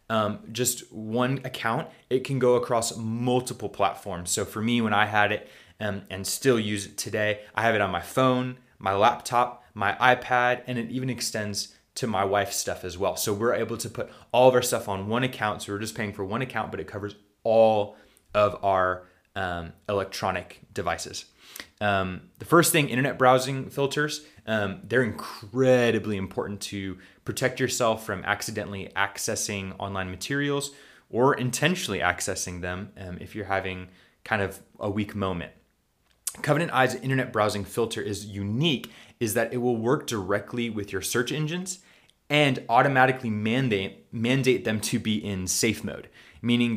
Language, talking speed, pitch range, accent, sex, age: English, 170 wpm, 100-120 Hz, American, male, 20-39